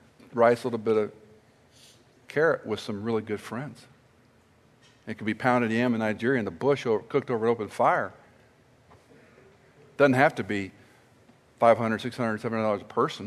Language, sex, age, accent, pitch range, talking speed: English, male, 50-69, American, 110-125 Hz, 165 wpm